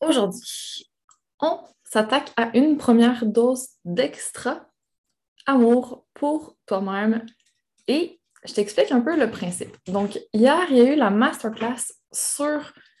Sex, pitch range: female, 205-270 Hz